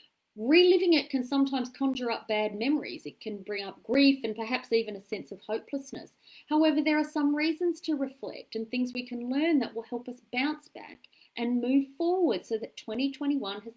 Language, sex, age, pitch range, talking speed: English, female, 30-49, 230-300 Hz, 195 wpm